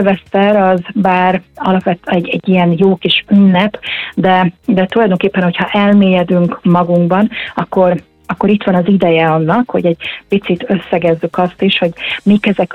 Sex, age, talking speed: female, 30-49, 150 wpm